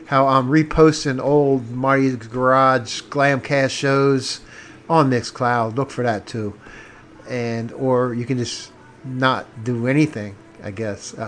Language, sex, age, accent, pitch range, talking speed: English, male, 50-69, American, 120-150 Hz, 130 wpm